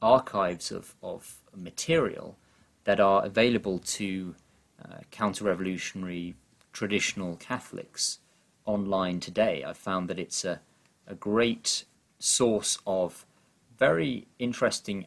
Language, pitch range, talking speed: English, 95-120 Hz, 100 wpm